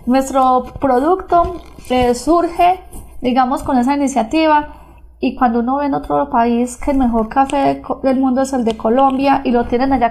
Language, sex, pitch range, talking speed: Spanish, female, 245-280 Hz, 185 wpm